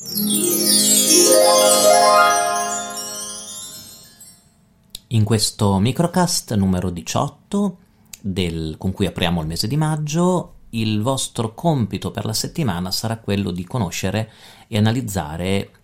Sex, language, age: male, Italian, 40-59